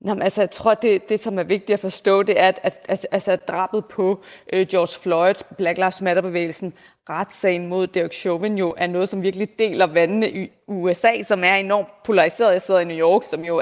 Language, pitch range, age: Danish, 175-200 Hz, 30-49